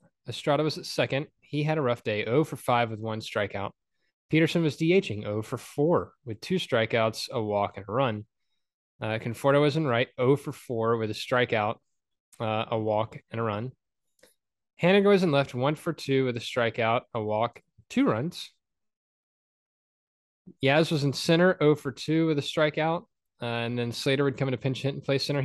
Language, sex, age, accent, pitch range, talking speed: English, male, 20-39, American, 115-150 Hz, 195 wpm